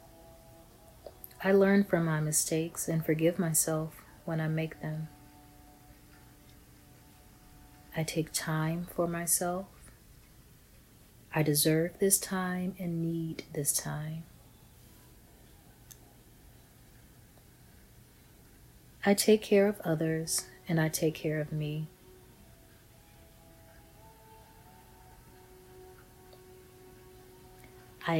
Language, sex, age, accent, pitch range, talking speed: English, female, 30-49, American, 125-170 Hz, 80 wpm